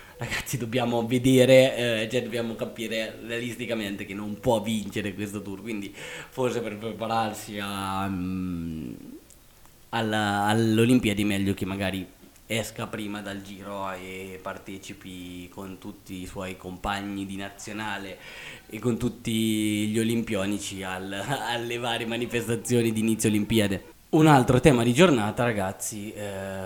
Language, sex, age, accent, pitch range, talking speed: Italian, male, 20-39, native, 100-120 Hz, 130 wpm